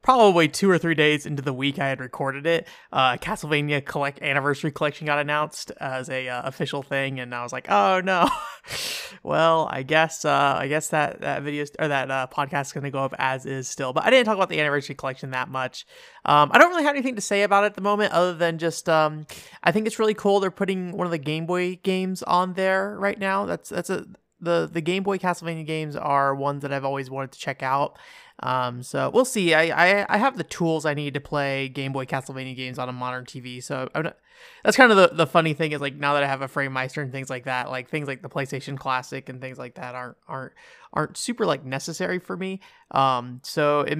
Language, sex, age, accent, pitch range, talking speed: English, male, 20-39, American, 135-180 Hz, 245 wpm